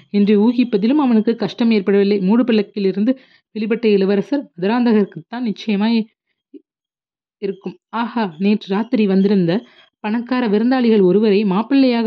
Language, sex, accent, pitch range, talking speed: Tamil, female, native, 190-230 Hz, 100 wpm